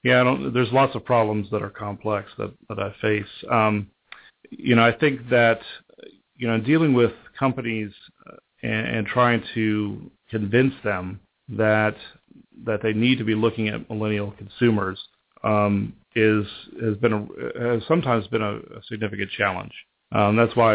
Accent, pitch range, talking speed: American, 105-120 Hz, 160 wpm